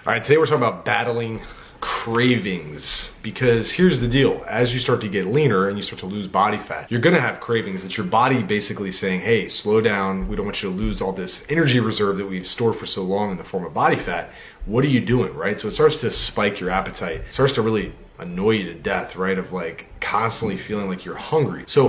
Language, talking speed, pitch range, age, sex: English, 240 wpm, 95-130 Hz, 30-49, male